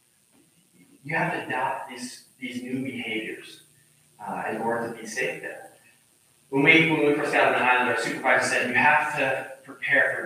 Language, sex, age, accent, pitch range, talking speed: English, male, 20-39, American, 125-150 Hz, 185 wpm